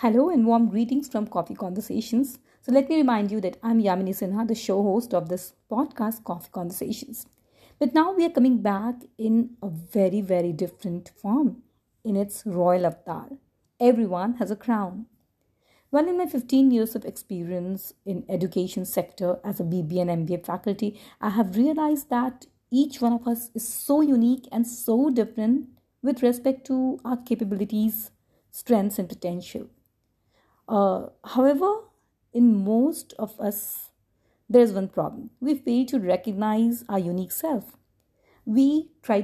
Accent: Indian